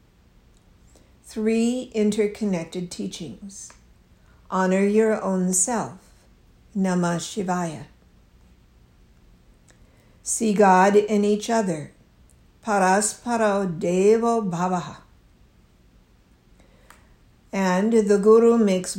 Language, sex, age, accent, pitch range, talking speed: English, female, 60-79, American, 175-230 Hz, 65 wpm